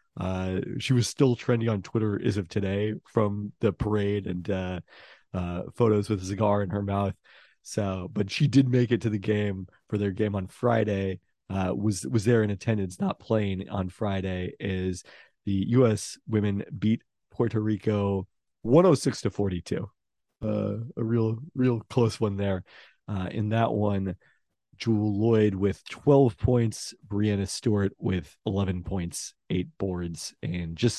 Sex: male